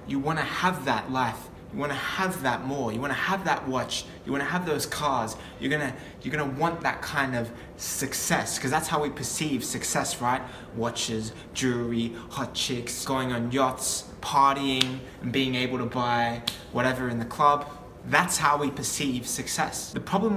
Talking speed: 195 wpm